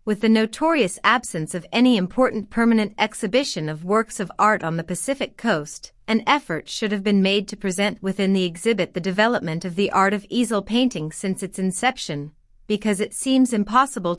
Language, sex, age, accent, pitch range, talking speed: English, female, 30-49, American, 180-230 Hz, 180 wpm